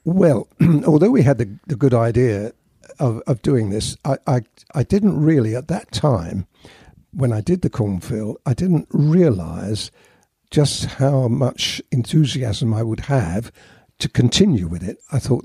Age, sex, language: 60-79, male, English